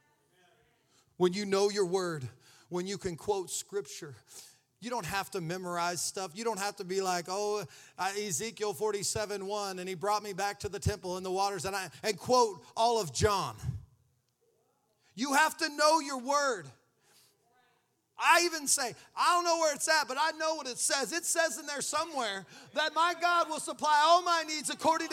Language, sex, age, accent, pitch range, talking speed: English, male, 40-59, American, 210-310 Hz, 190 wpm